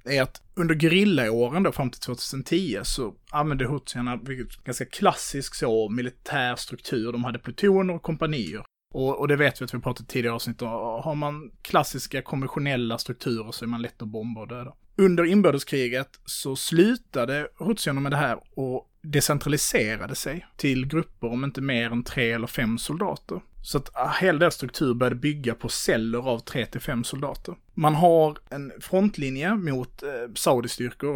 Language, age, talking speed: Swedish, 30-49, 170 wpm